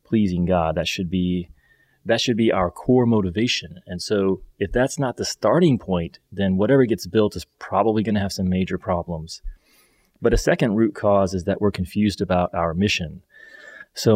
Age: 30-49